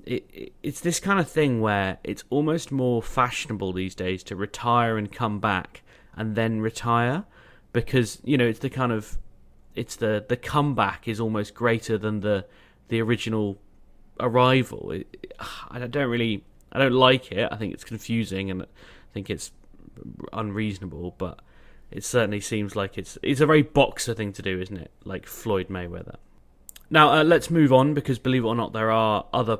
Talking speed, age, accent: 180 wpm, 30-49, British